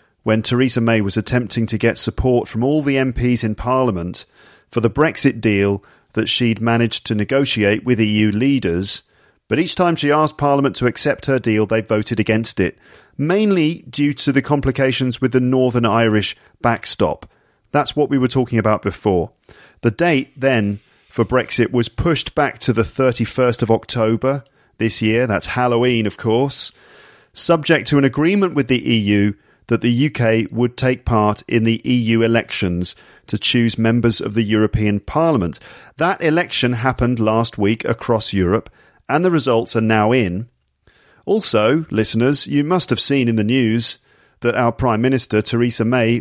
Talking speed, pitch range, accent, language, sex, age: 165 wpm, 110-135 Hz, British, English, male, 40-59